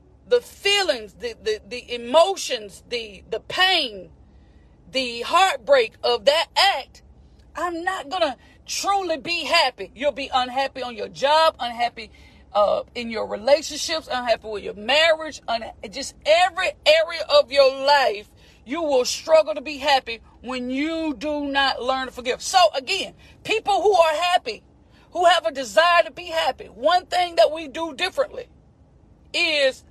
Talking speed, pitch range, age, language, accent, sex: 150 wpm, 280-365 Hz, 40-59, English, American, female